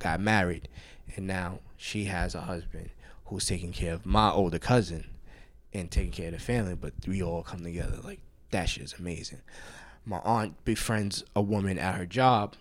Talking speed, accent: 185 wpm, American